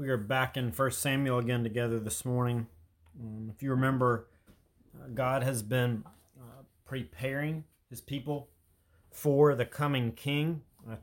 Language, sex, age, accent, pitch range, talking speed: English, male, 30-49, American, 110-140 Hz, 145 wpm